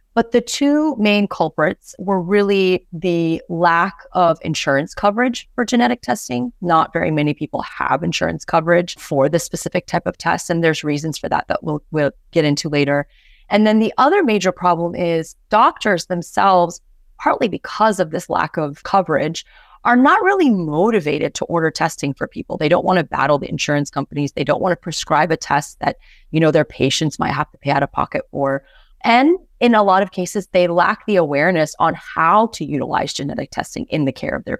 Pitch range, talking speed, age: 155-210 Hz, 195 wpm, 30-49